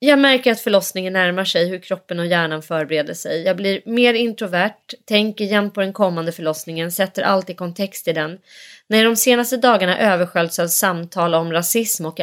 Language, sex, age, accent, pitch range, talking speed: Swedish, female, 30-49, native, 165-205 Hz, 185 wpm